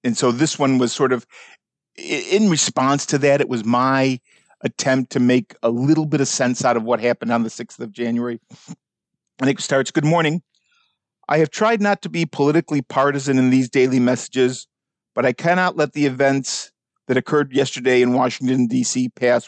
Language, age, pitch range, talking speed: English, 50-69, 125-155 Hz, 190 wpm